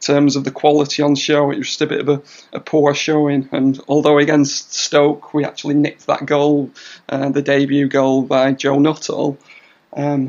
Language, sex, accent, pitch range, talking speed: English, male, British, 145-170 Hz, 190 wpm